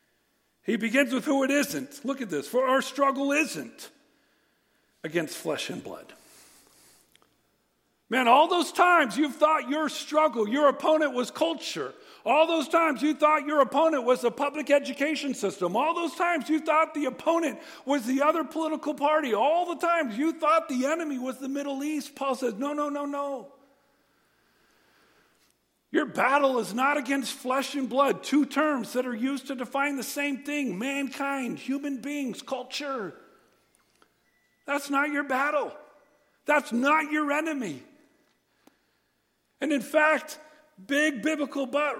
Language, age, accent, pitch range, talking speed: English, 50-69, American, 255-295 Hz, 150 wpm